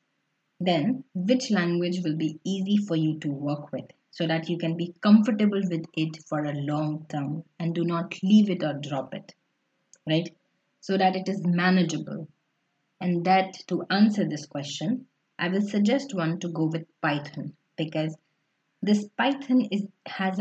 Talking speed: 165 wpm